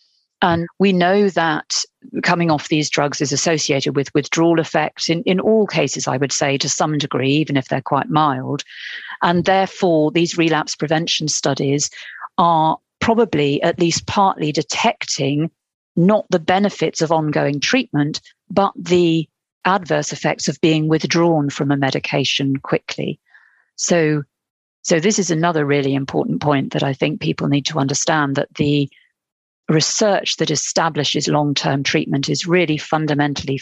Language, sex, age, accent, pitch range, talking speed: English, female, 40-59, British, 140-170 Hz, 145 wpm